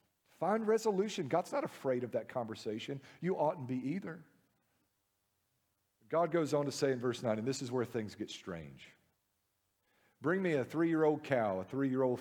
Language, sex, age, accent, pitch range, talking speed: English, male, 50-69, American, 115-155 Hz, 165 wpm